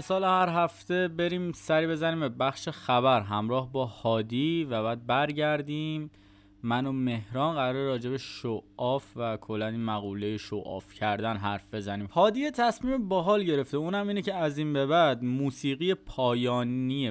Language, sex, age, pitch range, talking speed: Persian, male, 20-39, 110-145 Hz, 140 wpm